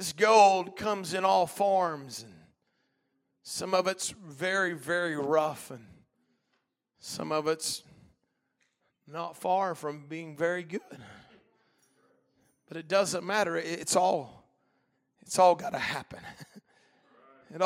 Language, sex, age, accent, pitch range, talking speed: English, male, 40-59, American, 145-190 Hz, 120 wpm